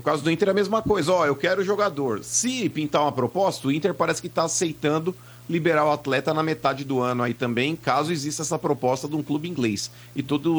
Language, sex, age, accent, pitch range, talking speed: Portuguese, male, 40-59, Brazilian, 120-165 Hz, 245 wpm